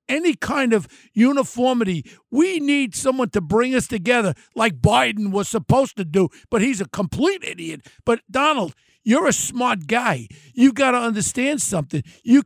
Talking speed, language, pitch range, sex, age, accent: 165 wpm, English, 200-260 Hz, male, 60-79, American